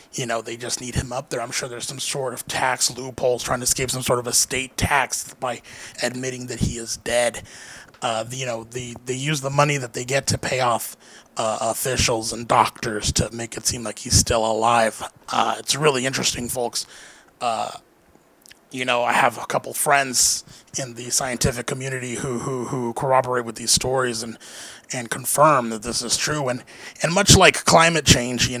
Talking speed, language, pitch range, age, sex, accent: 200 wpm, English, 115-135 Hz, 30-49, male, American